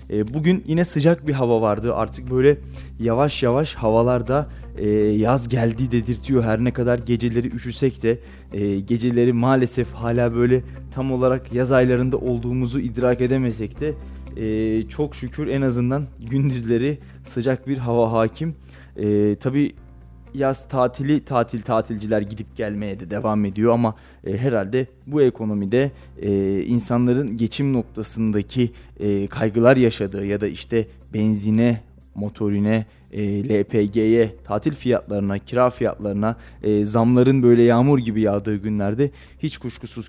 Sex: male